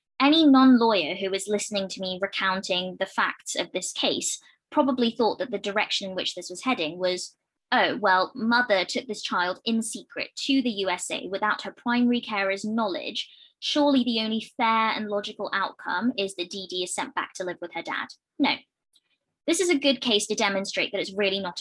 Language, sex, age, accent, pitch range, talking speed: English, female, 20-39, British, 190-260 Hz, 195 wpm